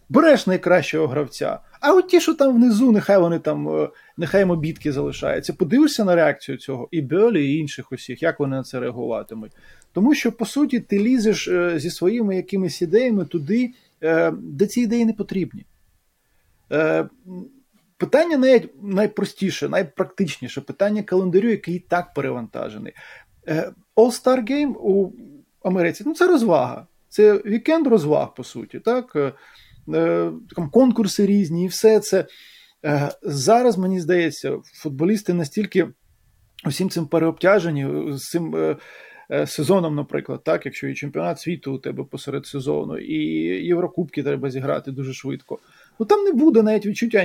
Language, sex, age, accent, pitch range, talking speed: Ukrainian, male, 30-49, native, 150-220 Hz, 135 wpm